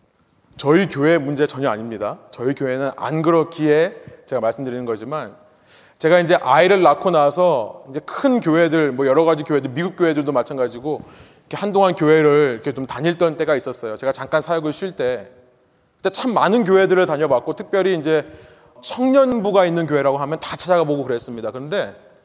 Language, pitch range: Korean, 145-190 Hz